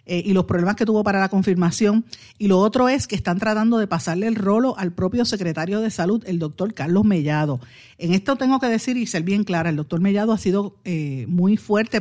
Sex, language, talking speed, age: female, Spanish, 225 wpm, 50-69